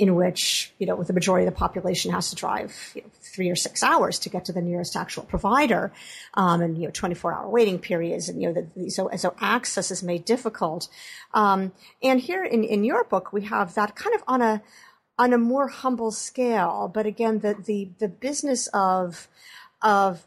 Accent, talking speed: American, 210 wpm